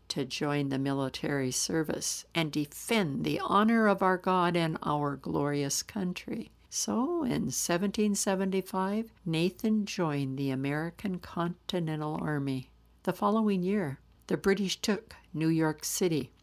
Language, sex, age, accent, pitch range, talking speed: English, female, 60-79, American, 155-210 Hz, 125 wpm